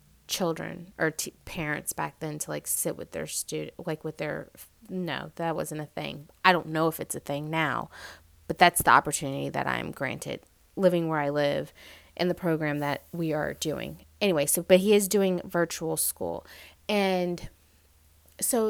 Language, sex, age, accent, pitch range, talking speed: English, female, 20-39, American, 160-205 Hz, 175 wpm